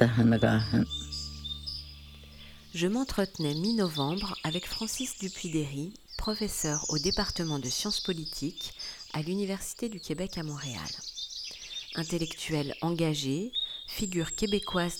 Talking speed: 90 wpm